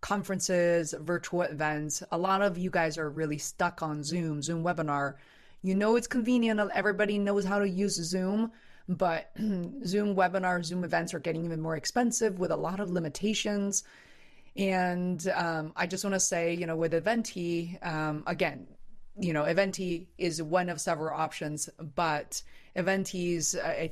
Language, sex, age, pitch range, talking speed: English, female, 30-49, 160-195 Hz, 160 wpm